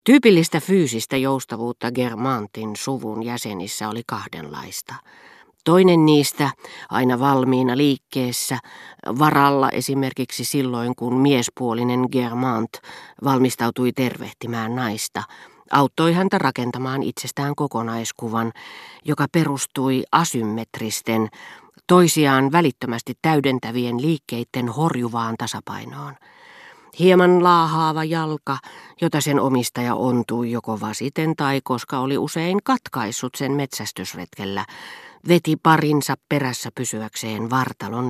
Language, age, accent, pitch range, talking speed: Finnish, 40-59, native, 120-155 Hz, 90 wpm